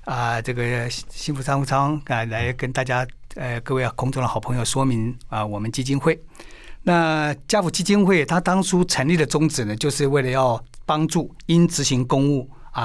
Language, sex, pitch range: Chinese, male, 120-160 Hz